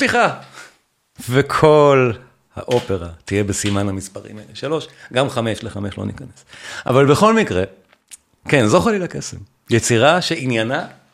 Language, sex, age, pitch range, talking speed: Hebrew, male, 40-59, 110-145 Hz, 120 wpm